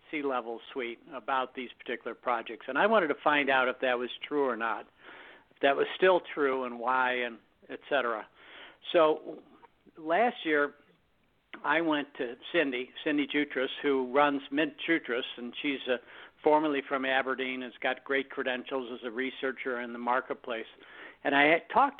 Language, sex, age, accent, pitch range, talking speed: English, male, 60-79, American, 125-145 Hz, 165 wpm